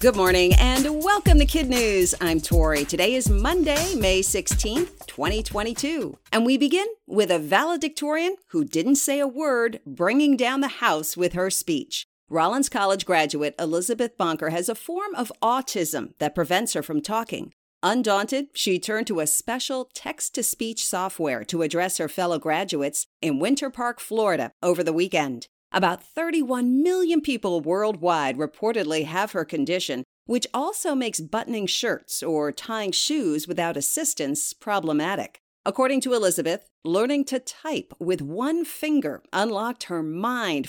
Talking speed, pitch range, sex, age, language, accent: 145 wpm, 175-280 Hz, female, 50-69, English, American